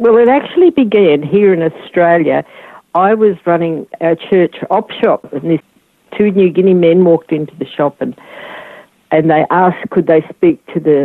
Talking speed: 180 wpm